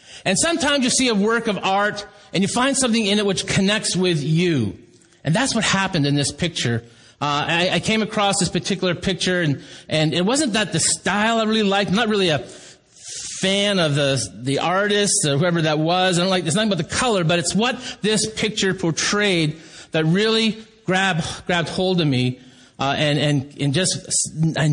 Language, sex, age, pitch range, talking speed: English, male, 30-49, 130-185 Hz, 205 wpm